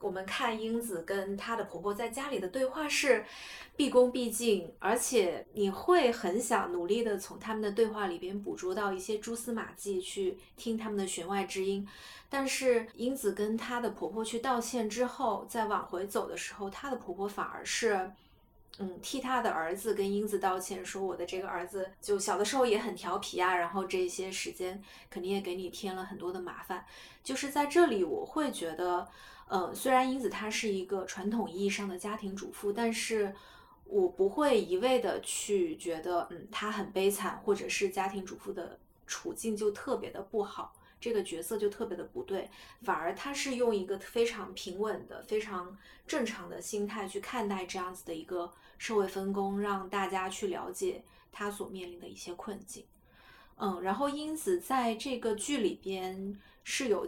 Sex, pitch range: female, 190-240 Hz